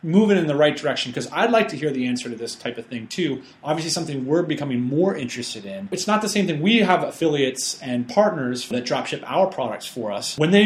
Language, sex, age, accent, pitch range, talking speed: English, male, 30-49, American, 125-190 Hz, 250 wpm